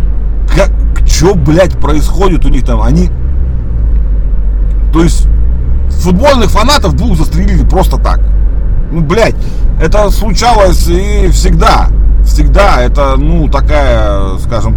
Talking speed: 110 wpm